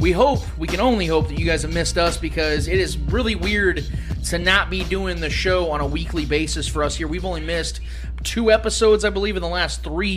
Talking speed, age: 240 wpm, 30-49